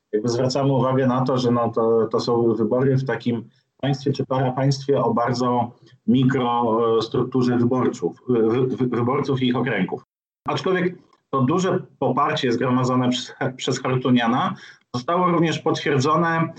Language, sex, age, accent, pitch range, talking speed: Polish, male, 30-49, native, 125-145 Hz, 125 wpm